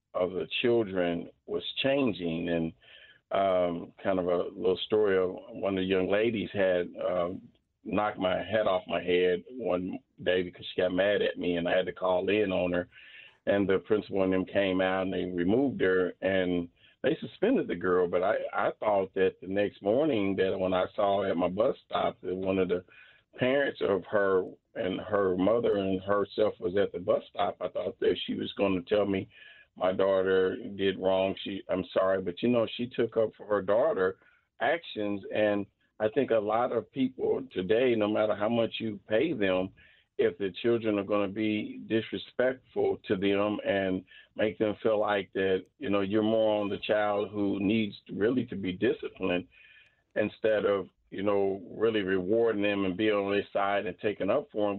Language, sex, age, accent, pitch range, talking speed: English, male, 40-59, American, 95-105 Hz, 195 wpm